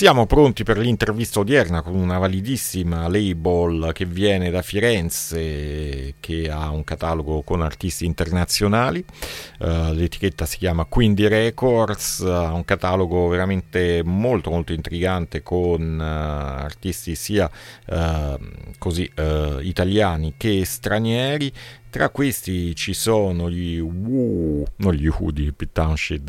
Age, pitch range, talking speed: 40-59, 80-105 Hz, 120 wpm